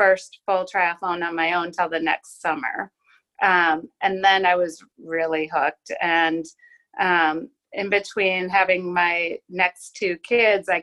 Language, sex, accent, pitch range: English, female, American, 175-215 Hz